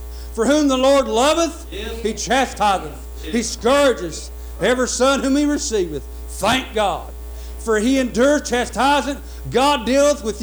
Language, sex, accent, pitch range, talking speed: English, male, American, 220-285 Hz, 130 wpm